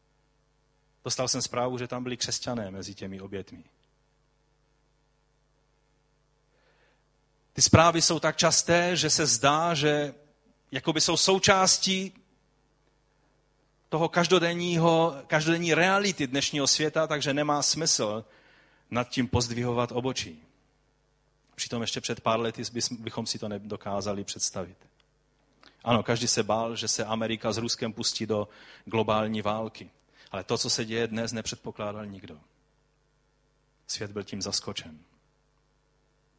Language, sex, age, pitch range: Czech, male, 40-59, 115-145 Hz